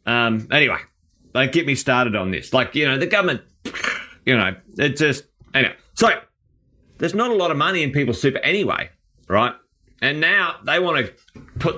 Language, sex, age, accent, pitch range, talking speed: English, male, 30-49, Australian, 105-135 Hz, 185 wpm